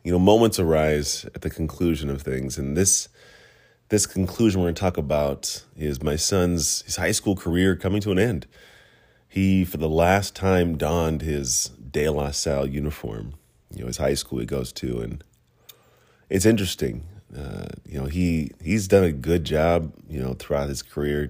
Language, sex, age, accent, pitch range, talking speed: English, male, 30-49, American, 75-95 Hz, 180 wpm